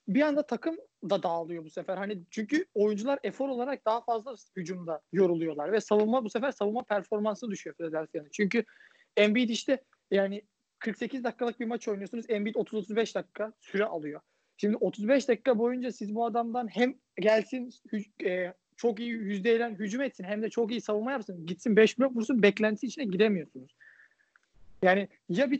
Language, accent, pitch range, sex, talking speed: Turkish, native, 195-255 Hz, male, 160 wpm